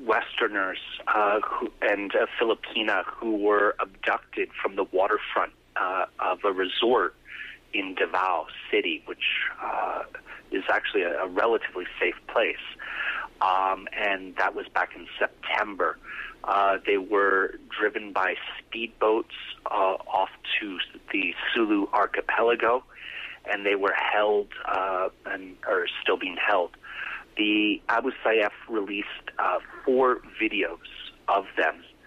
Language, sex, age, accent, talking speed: English, male, 30-49, American, 125 wpm